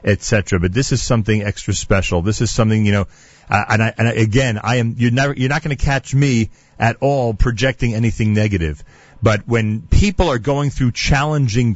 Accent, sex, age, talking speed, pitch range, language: American, male, 40-59, 200 wpm, 100-135 Hz, English